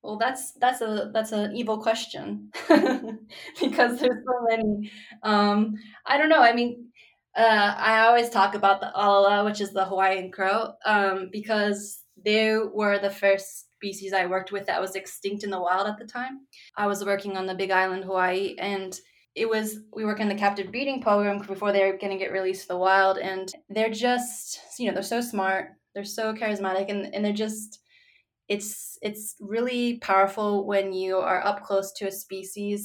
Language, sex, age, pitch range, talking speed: English, female, 20-39, 195-220 Hz, 185 wpm